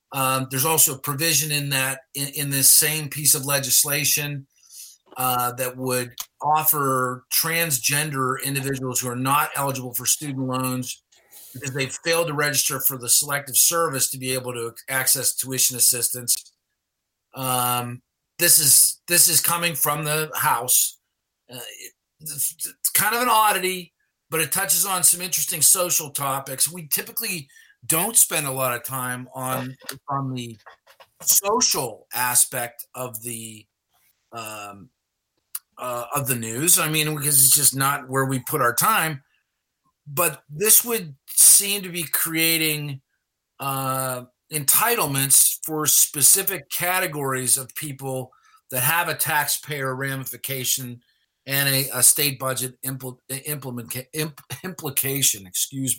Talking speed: 135 wpm